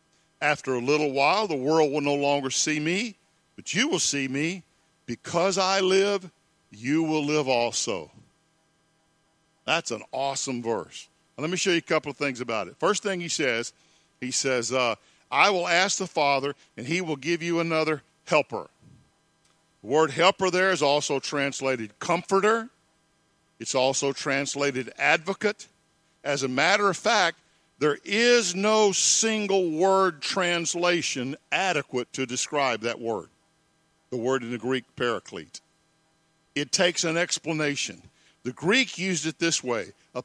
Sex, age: male, 50-69